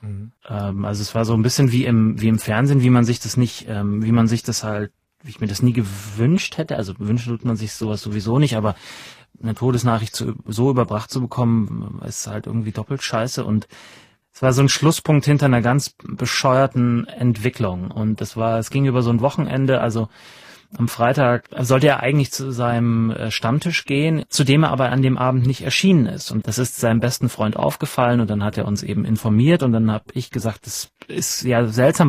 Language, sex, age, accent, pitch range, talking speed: German, male, 30-49, German, 110-130 Hz, 210 wpm